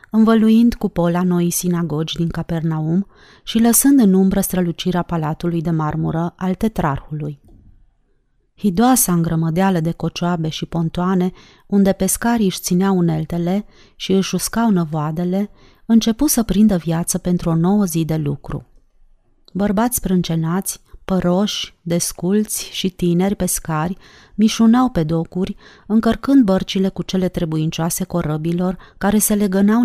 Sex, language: female, Romanian